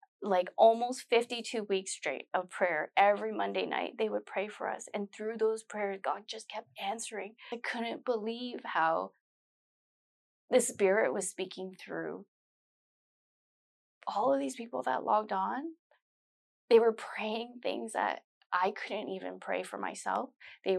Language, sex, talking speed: English, female, 145 wpm